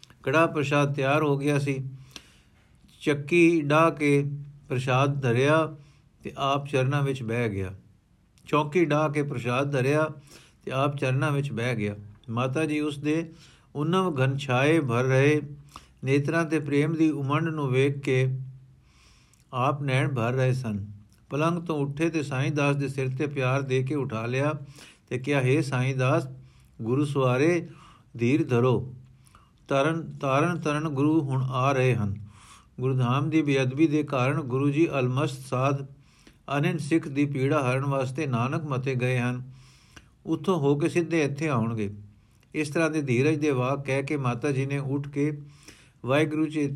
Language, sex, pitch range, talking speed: Punjabi, male, 125-150 Hz, 155 wpm